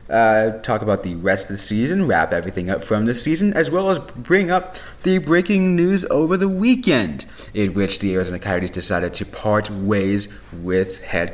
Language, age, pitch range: English, 30-49, 90-155 Hz